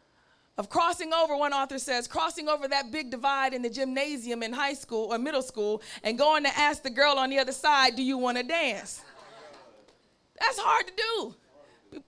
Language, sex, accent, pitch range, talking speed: English, female, American, 200-305 Hz, 200 wpm